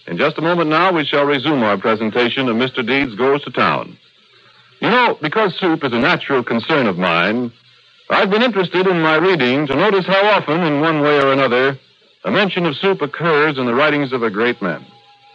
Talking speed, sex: 205 wpm, male